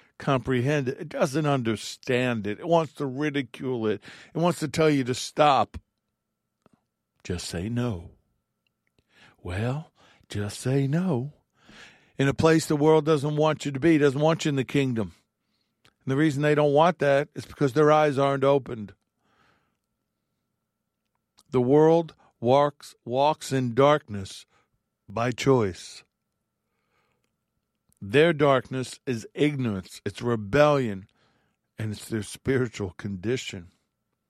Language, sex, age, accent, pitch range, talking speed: English, male, 50-69, American, 115-140 Hz, 130 wpm